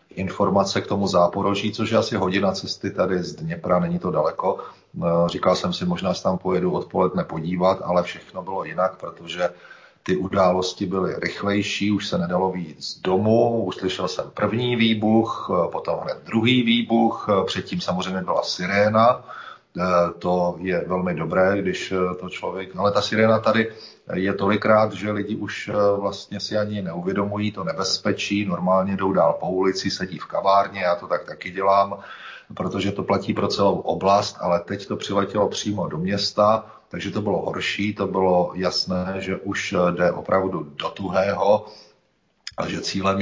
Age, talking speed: 40-59, 160 wpm